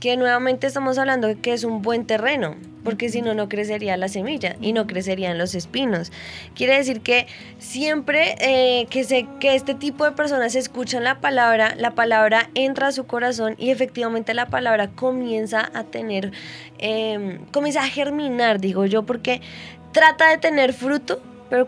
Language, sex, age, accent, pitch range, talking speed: Spanish, female, 20-39, Colombian, 215-255 Hz, 170 wpm